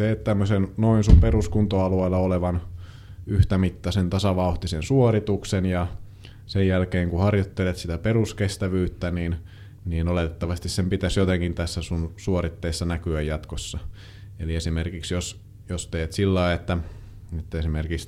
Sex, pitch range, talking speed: male, 85-100 Hz, 125 wpm